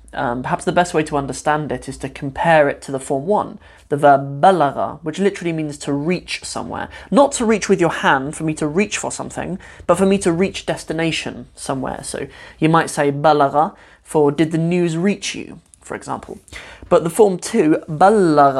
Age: 20-39